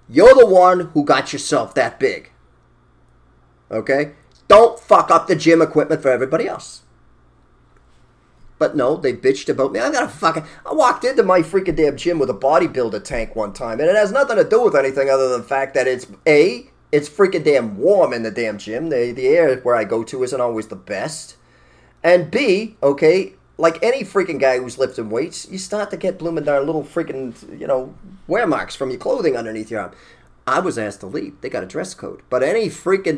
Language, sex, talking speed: English, male, 210 wpm